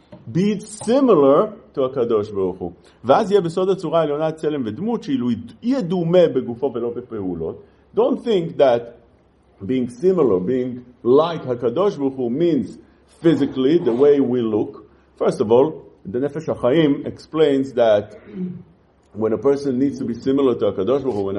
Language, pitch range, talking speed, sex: English, 130-190 Hz, 135 wpm, male